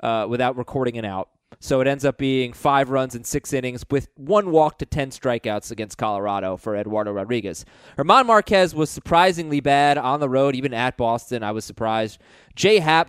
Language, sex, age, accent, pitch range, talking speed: English, male, 20-39, American, 120-155 Hz, 195 wpm